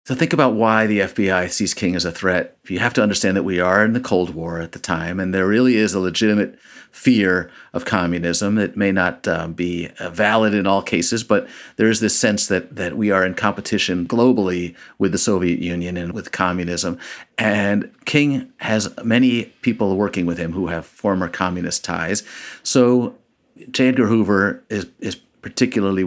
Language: English